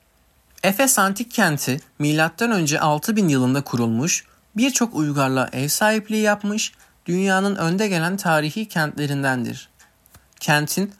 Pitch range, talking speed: 140-190 Hz, 100 wpm